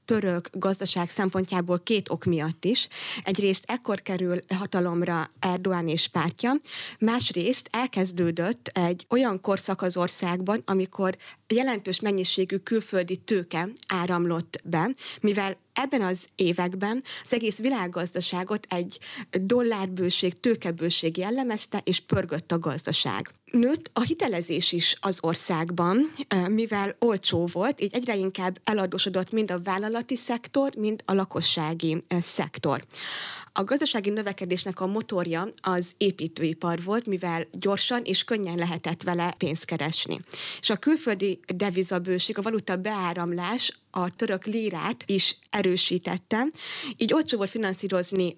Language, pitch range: Hungarian, 175-215 Hz